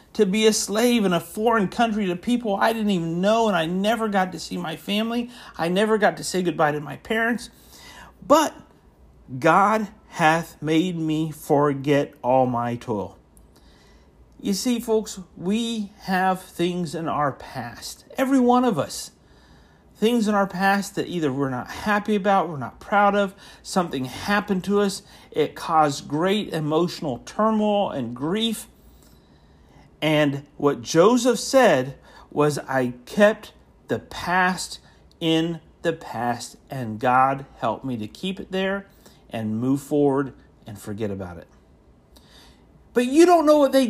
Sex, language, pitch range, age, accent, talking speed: male, English, 125-205 Hz, 50-69, American, 150 wpm